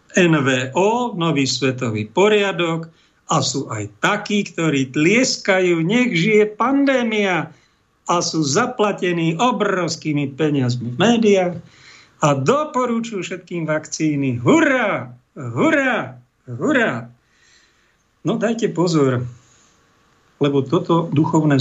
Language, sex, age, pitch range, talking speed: Slovak, male, 50-69, 130-175 Hz, 90 wpm